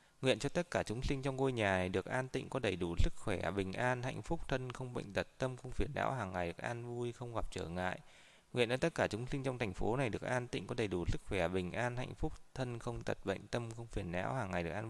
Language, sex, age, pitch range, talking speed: Vietnamese, male, 20-39, 100-125 Hz, 295 wpm